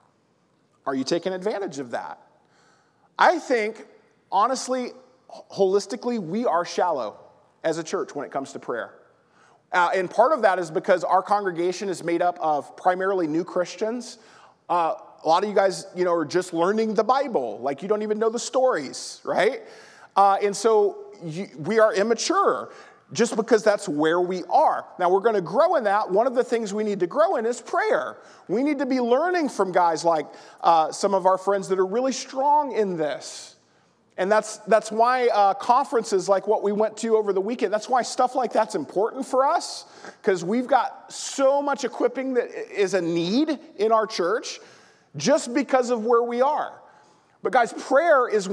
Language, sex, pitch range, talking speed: English, male, 190-255 Hz, 190 wpm